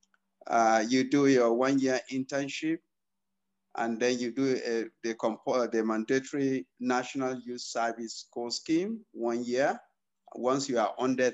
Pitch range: 120-160 Hz